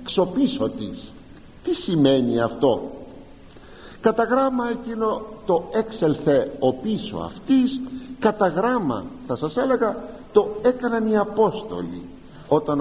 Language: Greek